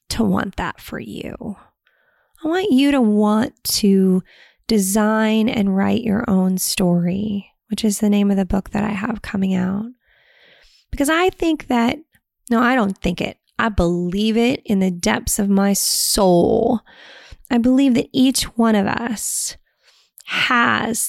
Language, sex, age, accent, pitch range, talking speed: English, female, 20-39, American, 180-225 Hz, 155 wpm